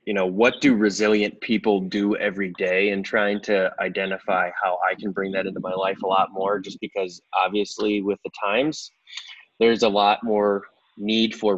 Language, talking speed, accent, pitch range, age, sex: English, 185 wpm, American, 95-110 Hz, 20-39, male